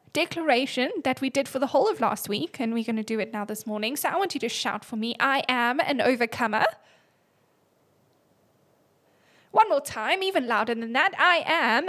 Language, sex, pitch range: English, female, 240-345 Hz